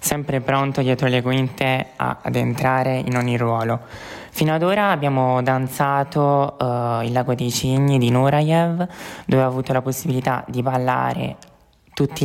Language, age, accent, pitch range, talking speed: Italian, 20-39, native, 125-140 Hz, 145 wpm